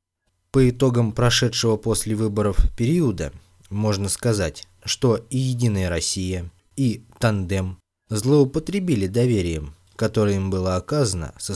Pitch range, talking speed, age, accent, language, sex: 90-115 Hz, 110 wpm, 20-39, native, Russian, male